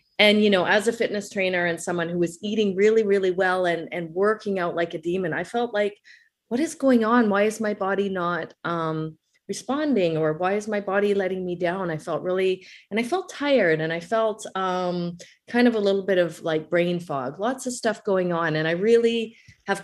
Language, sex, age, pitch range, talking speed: English, female, 30-49, 170-205 Hz, 220 wpm